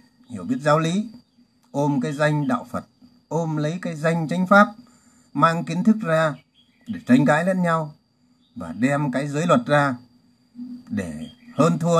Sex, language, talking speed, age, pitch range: male, Vietnamese, 165 wpm, 60-79, 155-245 Hz